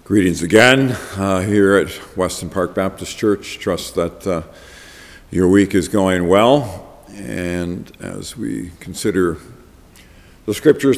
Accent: American